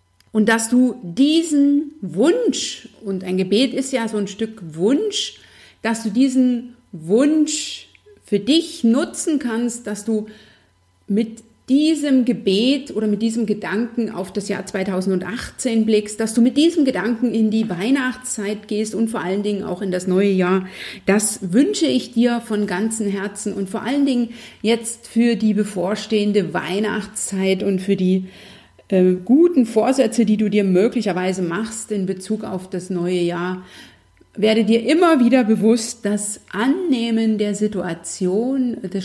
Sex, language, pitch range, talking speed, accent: female, German, 190-235 Hz, 150 wpm, German